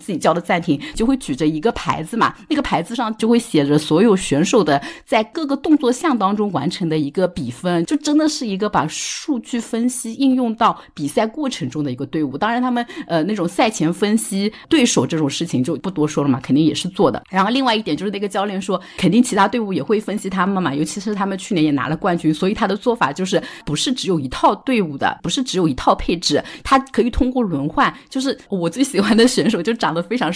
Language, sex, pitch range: Chinese, female, 165-240 Hz